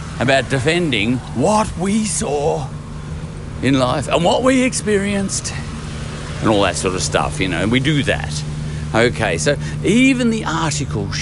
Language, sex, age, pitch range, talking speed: English, male, 50-69, 80-135 Hz, 150 wpm